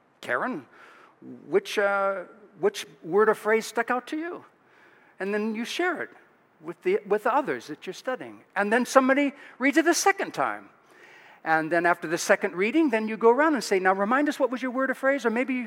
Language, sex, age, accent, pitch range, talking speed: English, male, 60-79, American, 200-285 Hz, 210 wpm